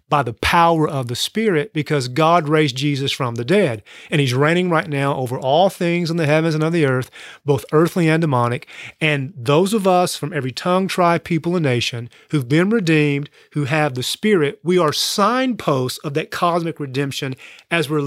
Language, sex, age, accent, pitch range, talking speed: English, male, 30-49, American, 145-180 Hz, 195 wpm